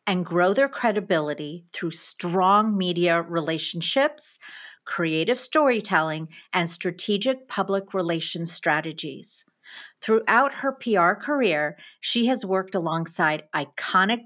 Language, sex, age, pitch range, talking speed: English, female, 50-69, 170-225 Hz, 100 wpm